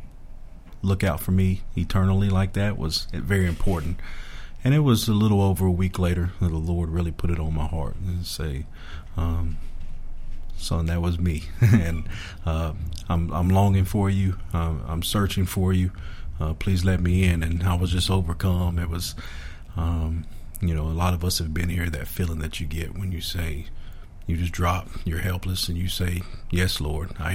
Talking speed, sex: 195 wpm, male